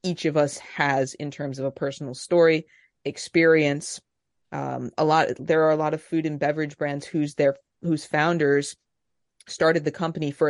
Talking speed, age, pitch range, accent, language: 175 wpm, 30-49, 145-170 Hz, American, English